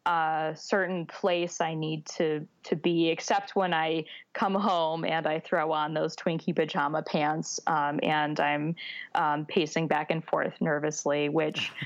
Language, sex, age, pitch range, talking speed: English, female, 20-39, 160-190 Hz, 155 wpm